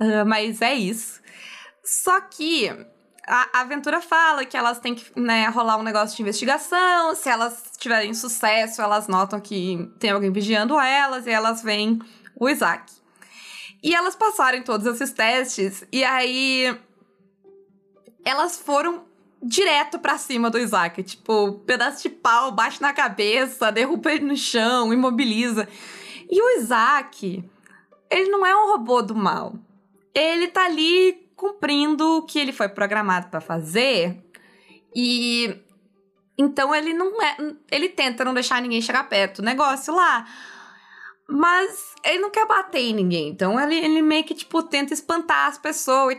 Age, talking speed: 20-39, 150 wpm